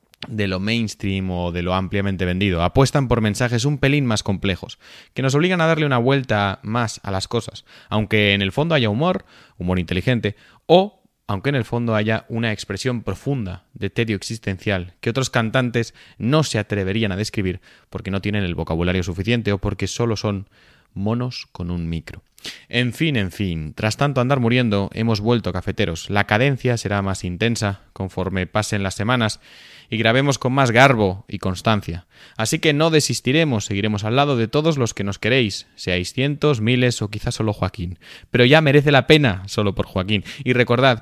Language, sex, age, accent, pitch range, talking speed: Spanish, male, 20-39, Spanish, 95-125 Hz, 185 wpm